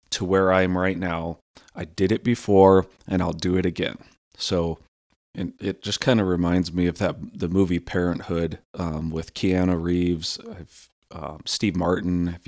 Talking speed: 180 wpm